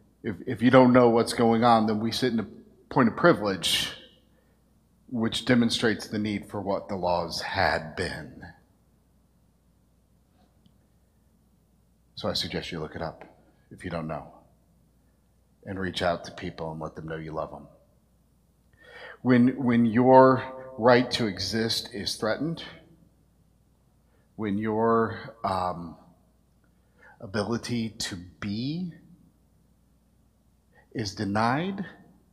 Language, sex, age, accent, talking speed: English, male, 40-59, American, 120 wpm